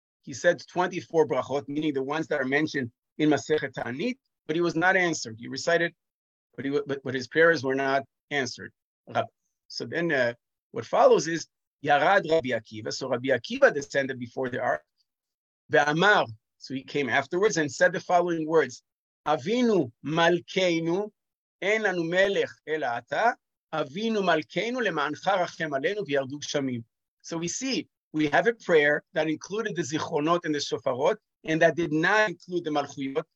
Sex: male